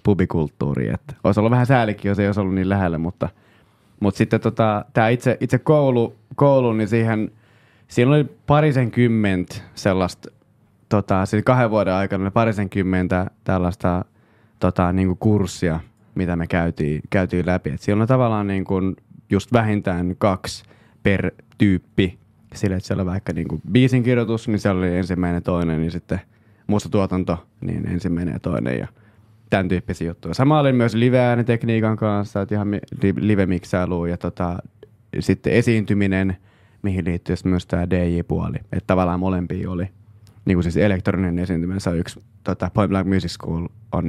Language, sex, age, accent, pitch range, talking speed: Finnish, male, 20-39, native, 90-115 Hz, 160 wpm